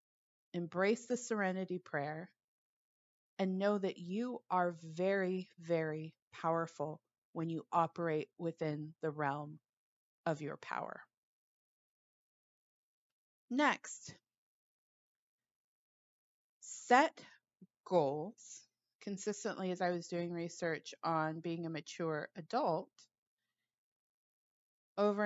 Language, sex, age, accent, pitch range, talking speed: English, female, 30-49, American, 165-220 Hz, 85 wpm